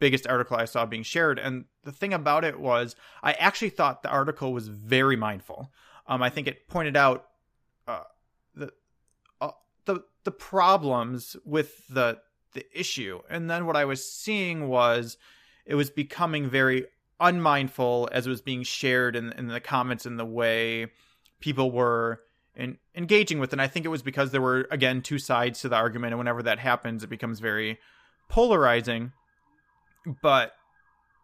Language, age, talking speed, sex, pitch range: English, 30-49, 170 wpm, male, 125-150 Hz